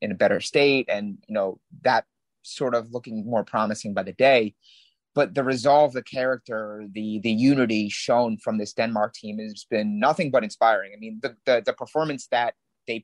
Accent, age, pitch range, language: American, 30-49, 110-135 Hz, English